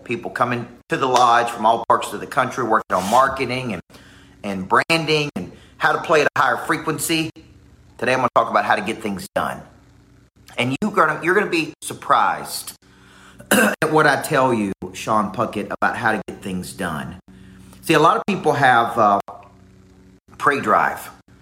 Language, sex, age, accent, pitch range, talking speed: English, male, 40-59, American, 105-145 Hz, 180 wpm